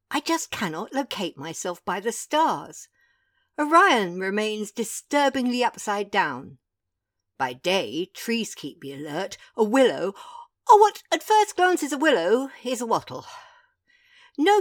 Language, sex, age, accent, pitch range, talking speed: English, female, 60-79, British, 185-300 Hz, 135 wpm